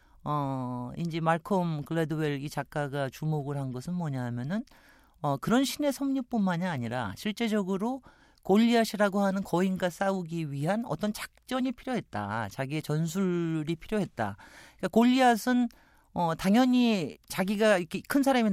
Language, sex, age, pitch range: Korean, male, 40-59, 140-210 Hz